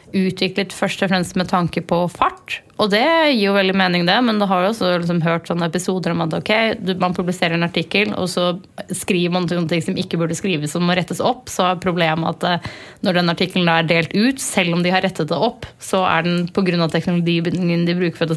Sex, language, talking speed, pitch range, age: female, English, 250 wpm, 170-195 Hz, 30-49